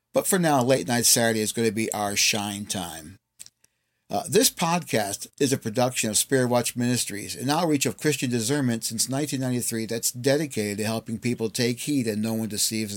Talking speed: 190 wpm